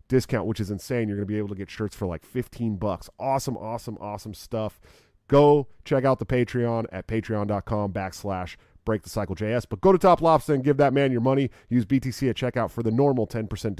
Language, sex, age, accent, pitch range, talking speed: English, male, 40-59, American, 110-145 Hz, 210 wpm